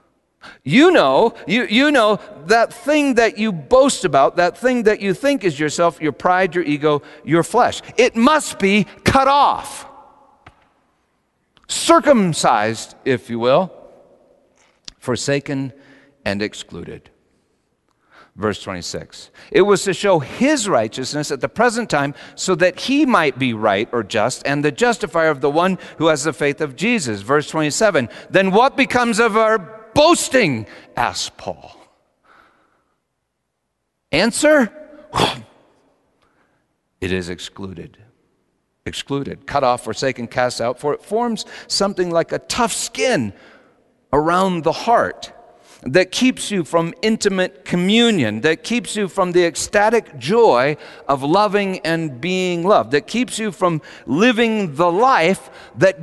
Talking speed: 135 wpm